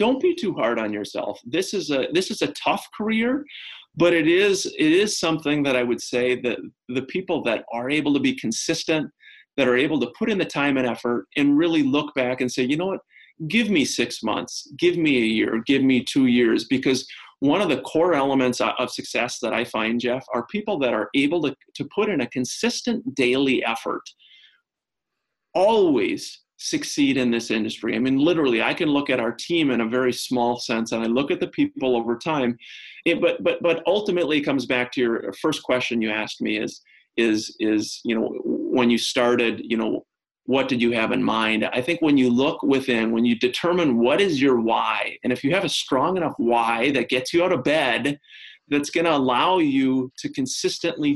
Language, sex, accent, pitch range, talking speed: English, male, American, 120-185 Hz, 210 wpm